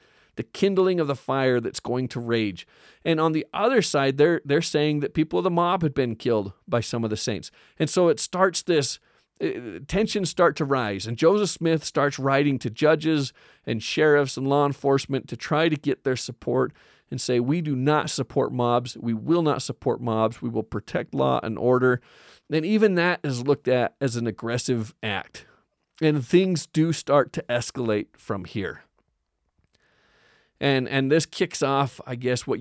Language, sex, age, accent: English, male, 40-59, American